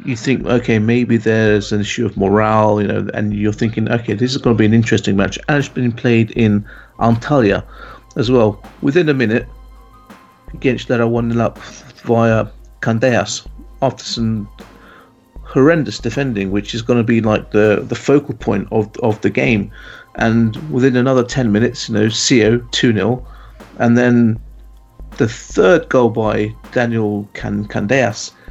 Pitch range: 110-130 Hz